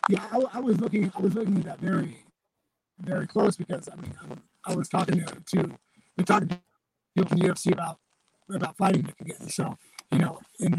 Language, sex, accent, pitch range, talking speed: English, male, American, 180-195 Hz, 205 wpm